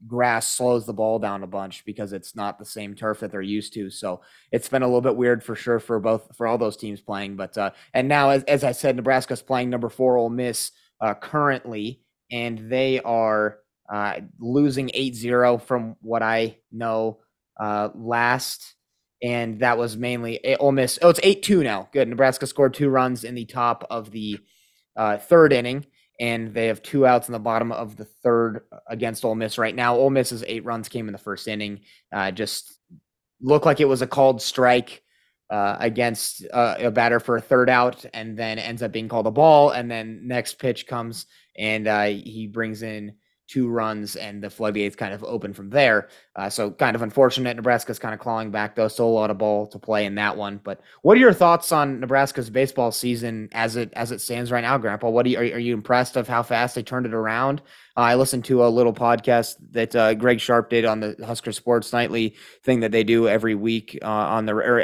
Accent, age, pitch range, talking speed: American, 30-49, 110-125 Hz, 220 wpm